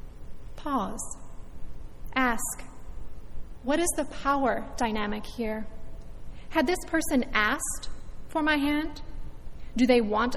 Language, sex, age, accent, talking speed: English, female, 30-49, American, 105 wpm